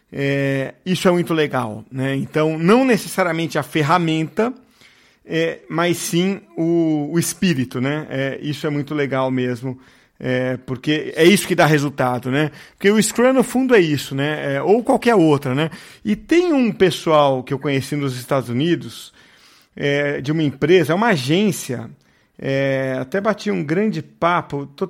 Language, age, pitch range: Portuguese, 40-59, 145-185 Hz